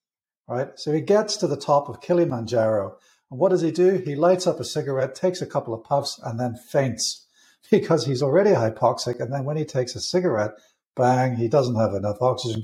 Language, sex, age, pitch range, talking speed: English, male, 60-79, 120-165 Hz, 210 wpm